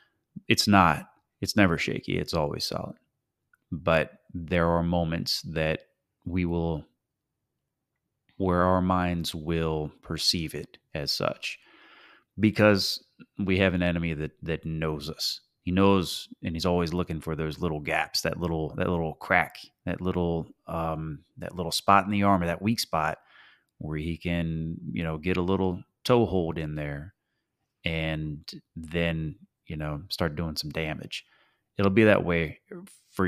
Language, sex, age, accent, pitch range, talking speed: English, male, 30-49, American, 80-95 Hz, 150 wpm